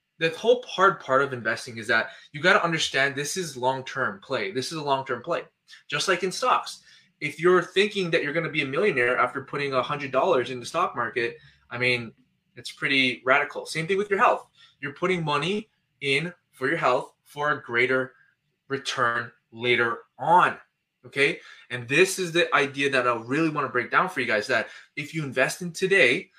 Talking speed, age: 200 wpm, 20-39